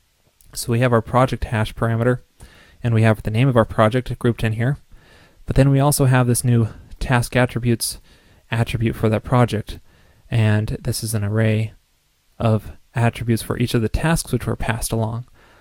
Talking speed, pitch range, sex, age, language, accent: 180 wpm, 110-125 Hz, male, 20-39, English, American